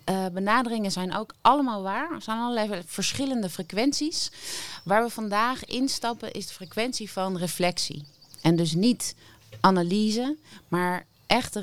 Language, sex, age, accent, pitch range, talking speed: Dutch, female, 30-49, Dutch, 155-195 Hz, 135 wpm